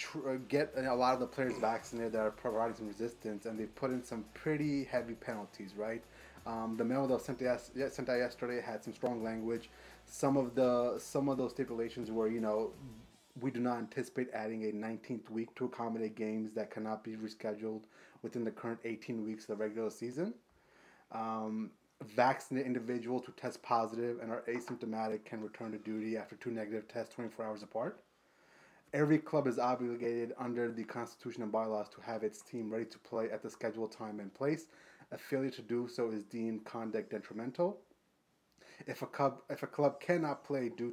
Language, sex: English, male